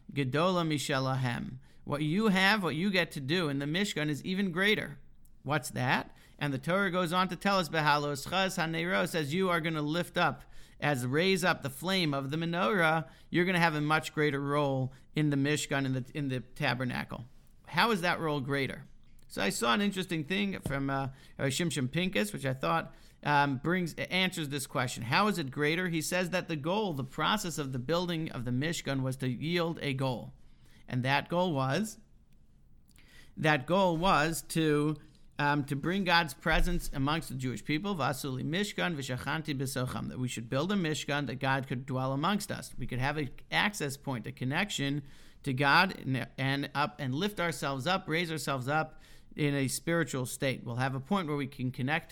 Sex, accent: male, American